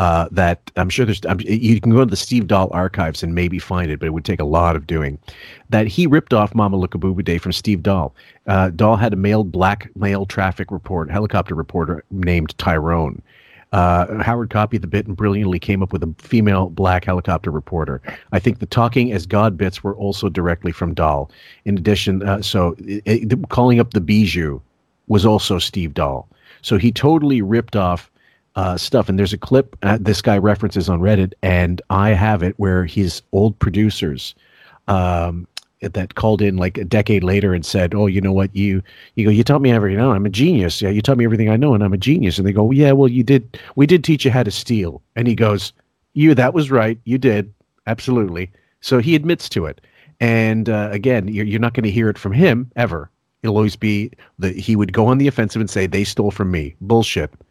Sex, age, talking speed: male, 40-59, 220 wpm